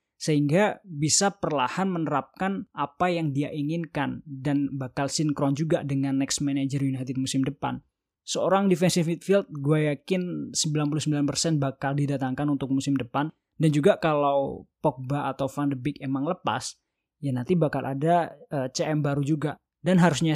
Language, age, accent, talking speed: Indonesian, 20-39, native, 145 wpm